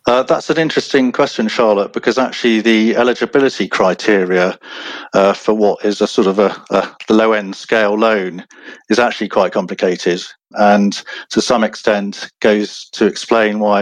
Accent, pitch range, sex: British, 95-115 Hz, male